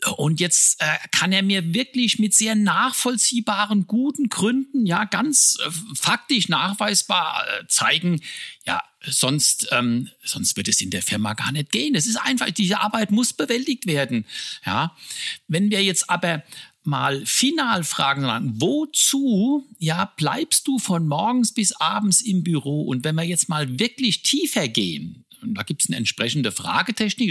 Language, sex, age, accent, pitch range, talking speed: German, male, 60-79, German, 155-235 Hz, 160 wpm